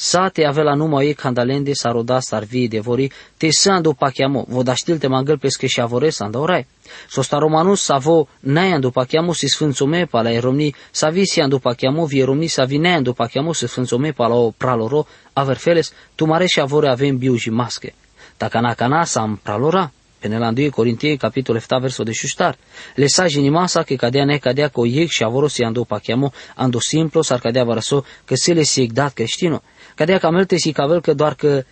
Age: 20-39